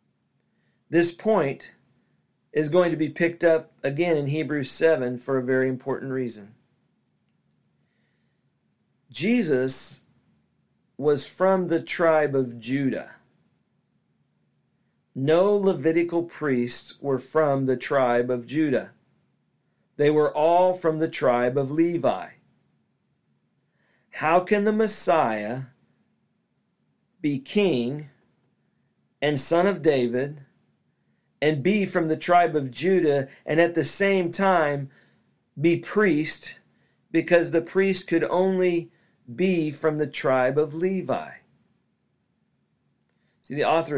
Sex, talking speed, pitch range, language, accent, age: male, 110 wpm, 130-170 Hz, English, American, 40-59